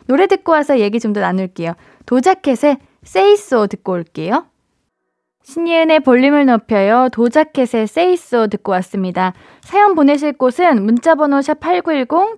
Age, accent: 20-39, native